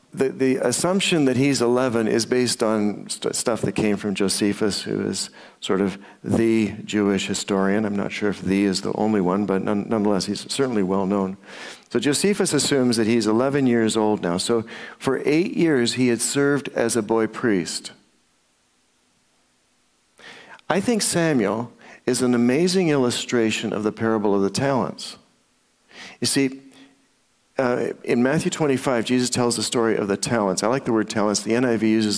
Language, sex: English, male